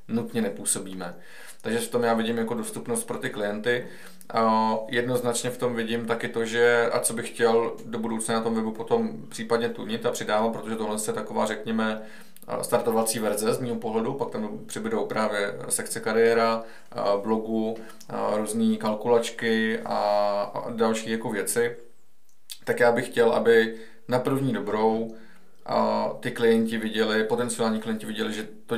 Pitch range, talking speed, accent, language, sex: 110-120 Hz, 150 wpm, native, Czech, male